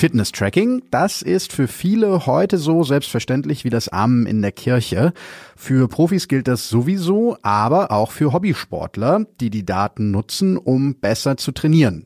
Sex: male